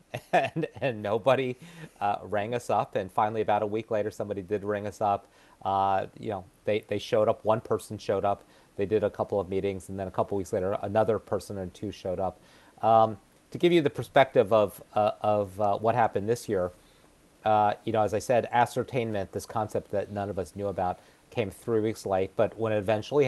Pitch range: 100-115 Hz